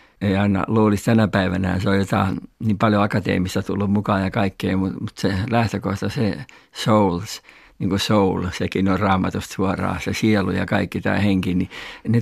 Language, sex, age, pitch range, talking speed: Finnish, male, 60-79, 95-110 Hz, 170 wpm